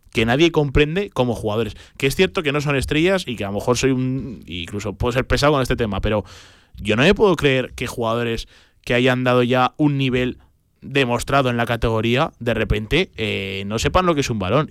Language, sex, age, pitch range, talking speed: Spanish, male, 20-39, 105-140 Hz, 220 wpm